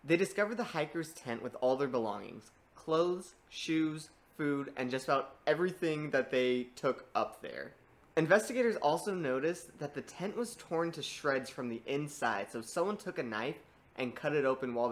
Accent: American